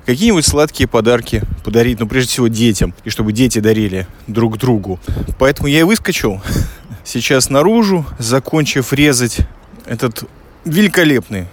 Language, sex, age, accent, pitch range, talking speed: Russian, male, 20-39, native, 110-145 Hz, 125 wpm